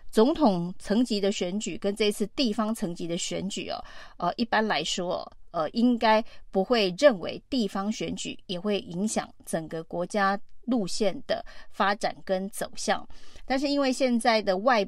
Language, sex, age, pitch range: Chinese, female, 30-49, 190-240 Hz